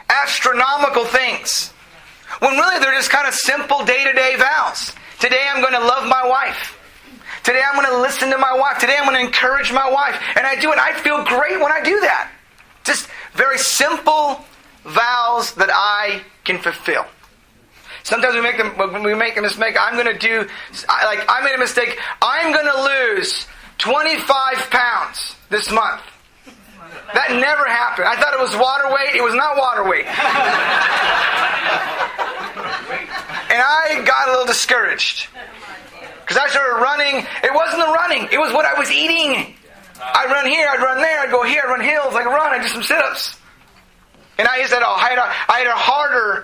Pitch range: 240-285 Hz